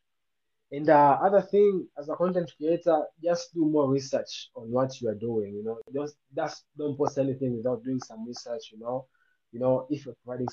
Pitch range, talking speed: 125-155 Hz, 205 wpm